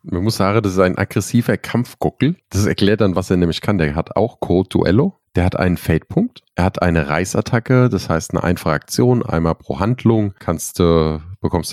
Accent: German